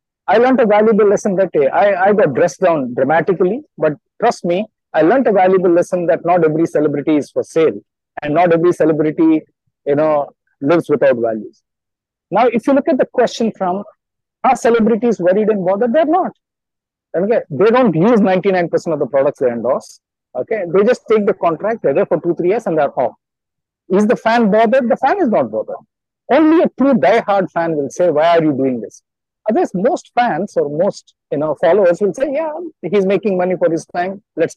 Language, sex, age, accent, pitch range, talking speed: English, male, 50-69, Indian, 165-240 Hz, 205 wpm